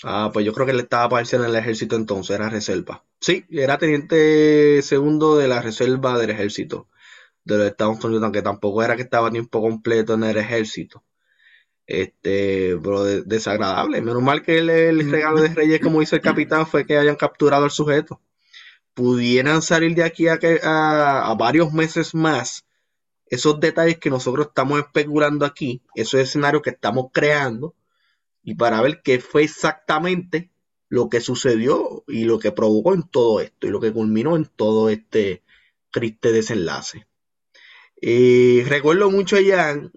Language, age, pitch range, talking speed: Spanish, 20-39, 120-155 Hz, 165 wpm